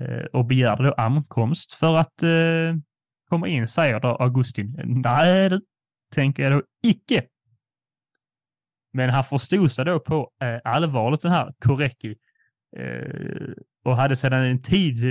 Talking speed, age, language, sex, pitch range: 140 wpm, 20-39, Swedish, male, 120-155 Hz